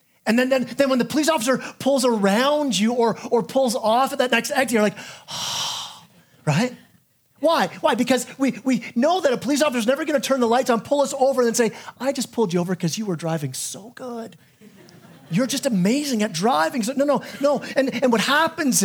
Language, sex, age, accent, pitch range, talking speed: English, male, 30-49, American, 175-260 Hz, 225 wpm